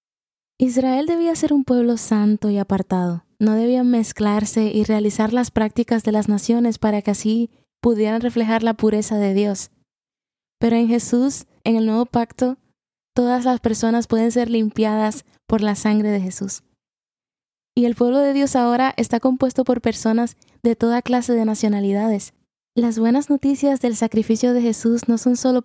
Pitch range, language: 215-240 Hz, Spanish